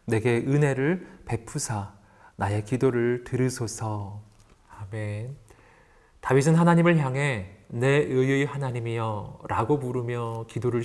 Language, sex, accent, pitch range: Korean, male, native, 110-145 Hz